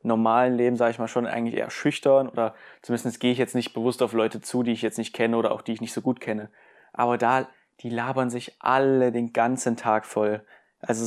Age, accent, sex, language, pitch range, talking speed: 20-39, German, male, German, 115-130 Hz, 235 wpm